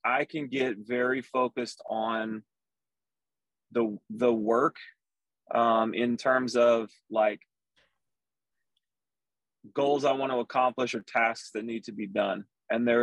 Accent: American